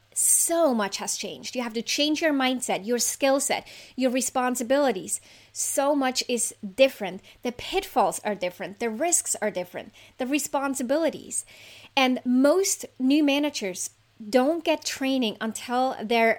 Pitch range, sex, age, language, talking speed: 215-275 Hz, female, 30-49, English, 140 wpm